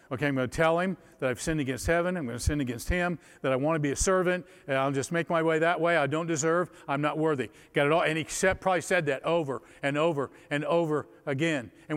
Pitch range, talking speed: 135-180 Hz, 255 wpm